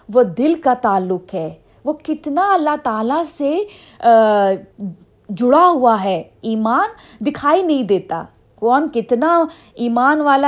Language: Urdu